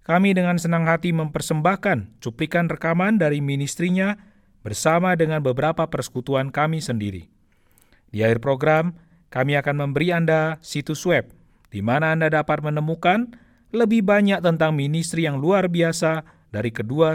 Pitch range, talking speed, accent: 125-175 Hz, 135 wpm, native